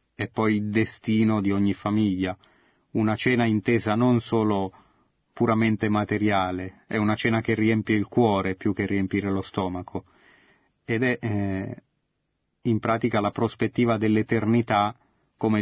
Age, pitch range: 30-49, 100-130 Hz